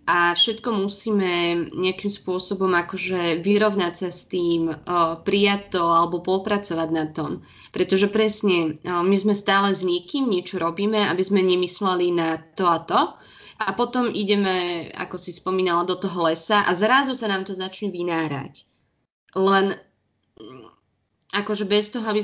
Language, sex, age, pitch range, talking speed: Slovak, female, 20-39, 180-210 Hz, 145 wpm